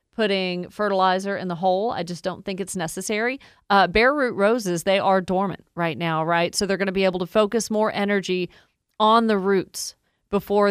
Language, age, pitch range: English, 40-59, 175-200 Hz